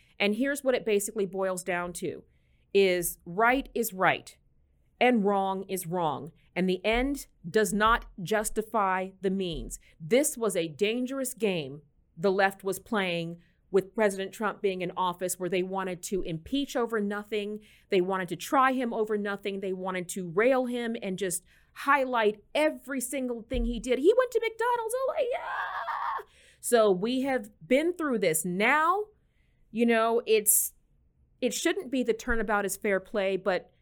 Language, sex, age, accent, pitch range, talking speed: English, female, 30-49, American, 195-260 Hz, 160 wpm